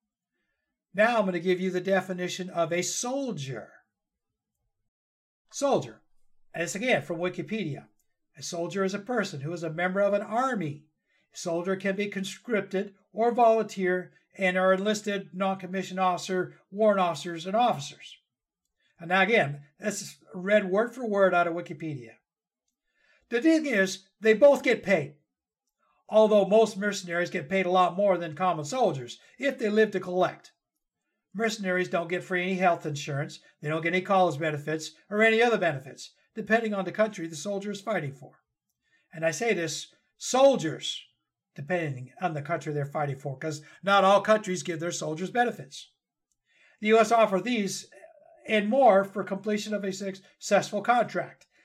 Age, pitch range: 60-79, 175-215 Hz